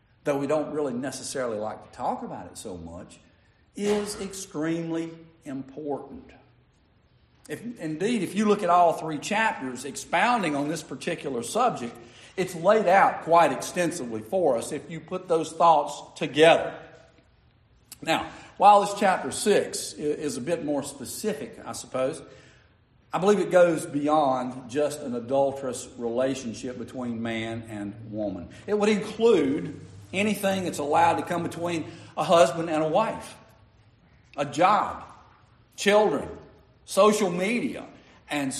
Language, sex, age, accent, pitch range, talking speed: English, male, 50-69, American, 120-180 Hz, 135 wpm